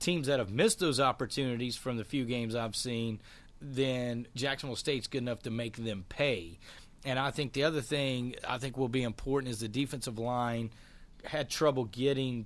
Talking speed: 190 wpm